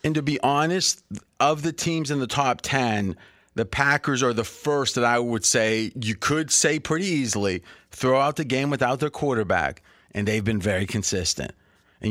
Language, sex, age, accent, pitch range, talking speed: English, male, 30-49, American, 110-145 Hz, 190 wpm